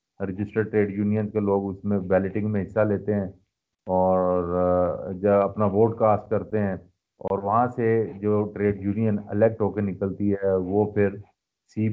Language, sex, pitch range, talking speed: Urdu, male, 105-130 Hz, 165 wpm